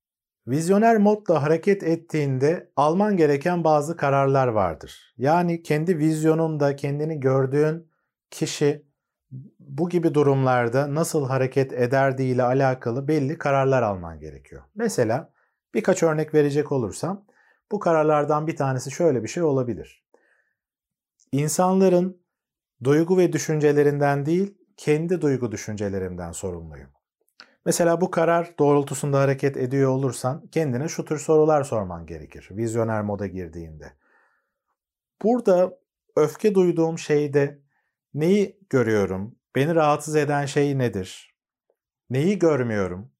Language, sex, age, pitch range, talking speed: Turkish, male, 40-59, 130-160 Hz, 105 wpm